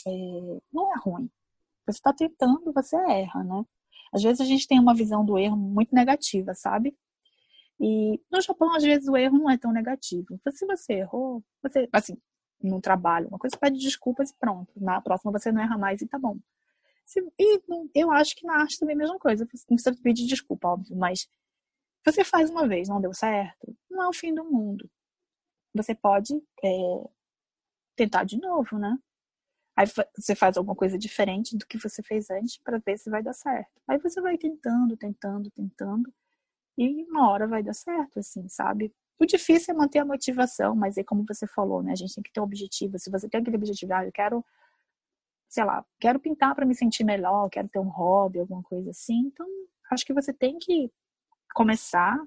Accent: Brazilian